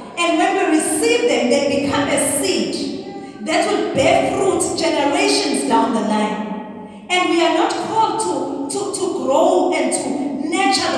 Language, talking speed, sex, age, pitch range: English, 160 wpm, female, 30-49, 245-315 Hz